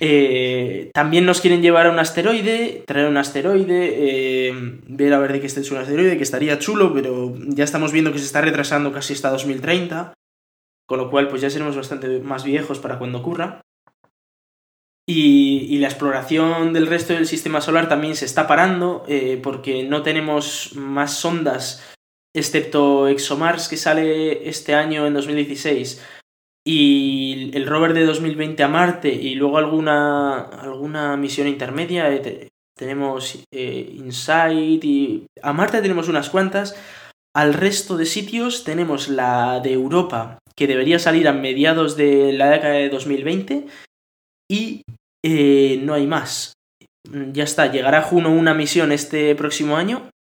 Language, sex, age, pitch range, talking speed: Spanish, male, 20-39, 135-165 Hz, 155 wpm